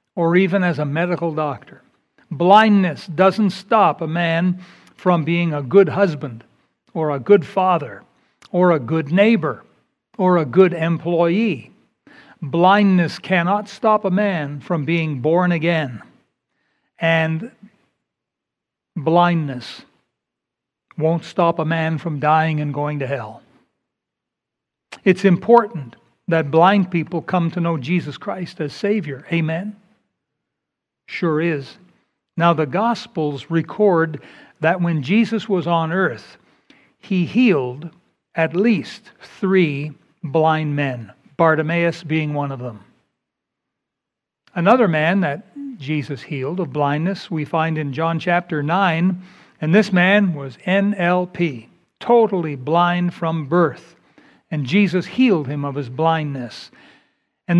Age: 60-79